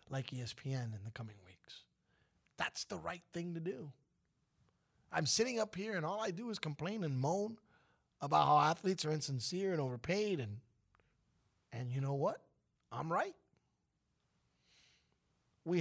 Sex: male